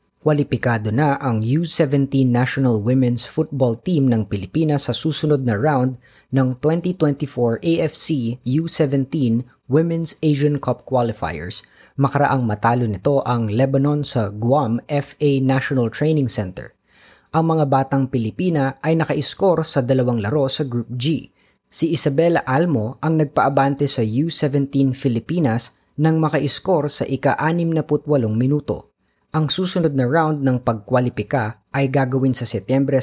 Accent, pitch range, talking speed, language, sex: native, 120-150 Hz, 125 wpm, Filipino, female